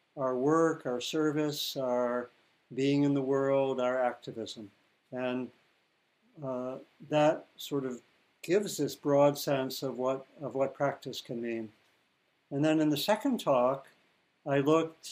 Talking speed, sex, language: 140 wpm, male, English